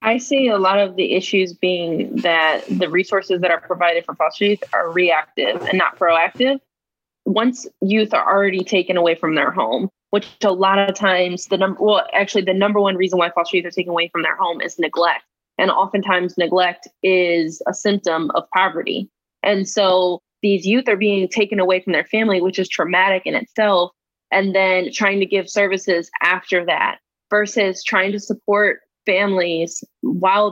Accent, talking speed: American, 185 wpm